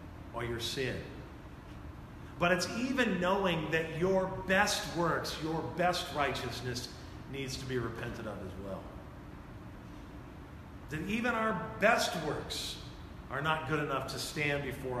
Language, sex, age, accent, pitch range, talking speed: English, male, 40-59, American, 120-185 Hz, 130 wpm